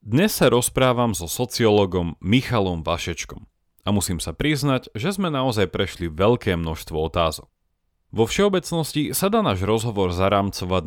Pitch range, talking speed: 85-125 Hz, 140 wpm